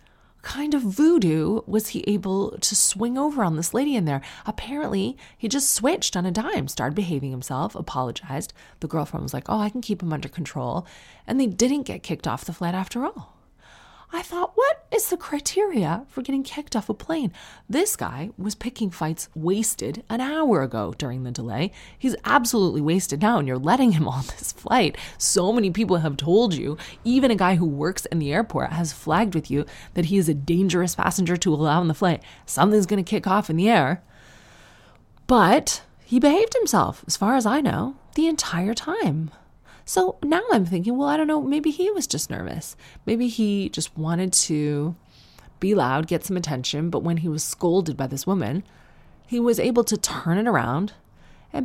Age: 30-49